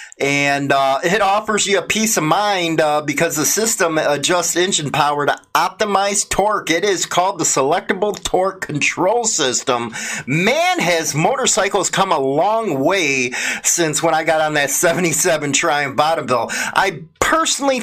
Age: 30-49